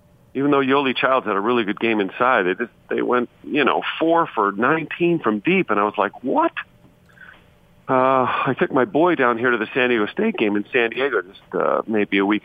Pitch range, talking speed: 105-135 Hz, 225 wpm